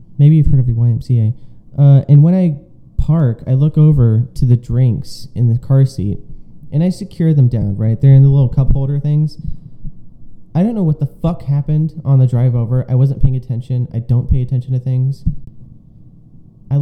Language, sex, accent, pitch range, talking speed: English, male, American, 125-155 Hz, 200 wpm